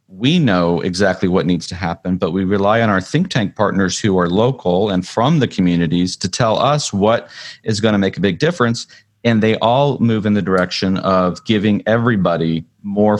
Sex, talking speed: male, 200 wpm